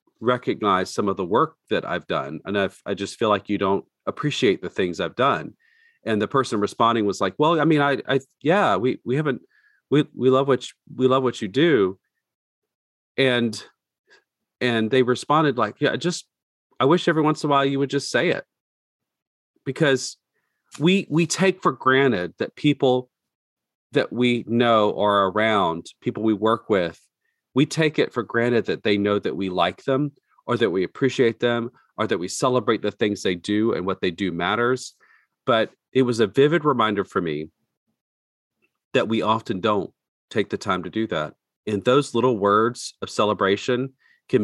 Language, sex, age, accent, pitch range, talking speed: English, male, 40-59, American, 105-135 Hz, 180 wpm